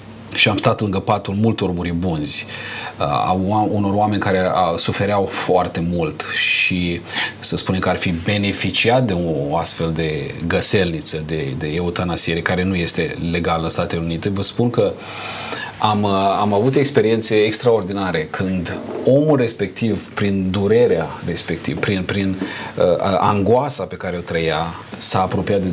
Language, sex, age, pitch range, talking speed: Romanian, male, 30-49, 90-115 Hz, 140 wpm